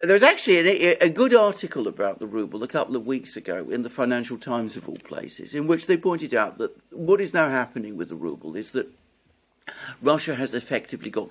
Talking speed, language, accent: 210 wpm, English, British